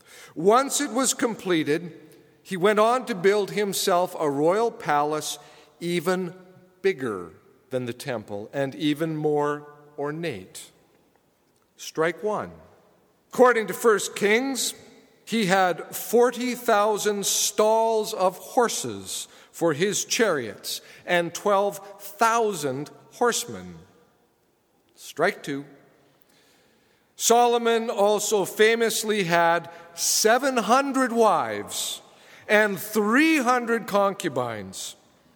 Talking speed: 85 wpm